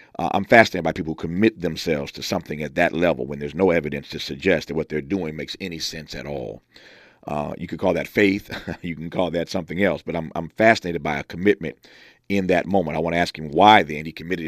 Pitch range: 85-115 Hz